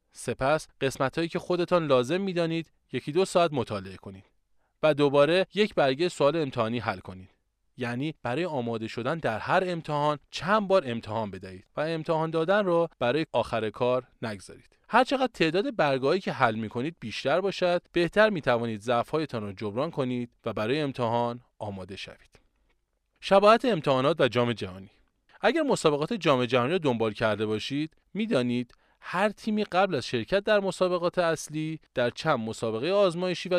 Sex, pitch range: male, 120-170 Hz